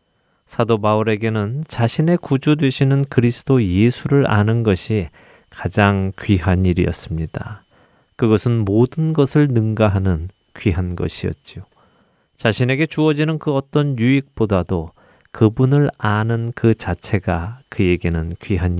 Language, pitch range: Korean, 95-130 Hz